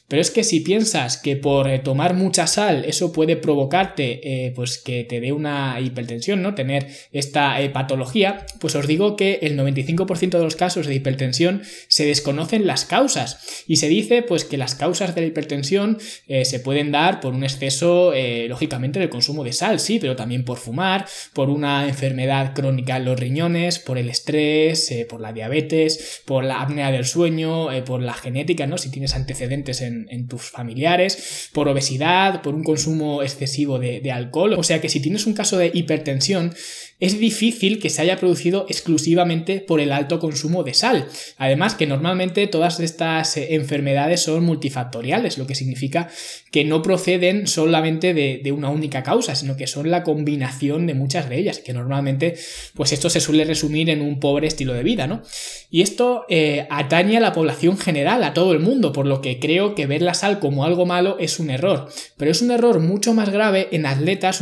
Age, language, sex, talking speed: 20-39, Spanish, male, 195 wpm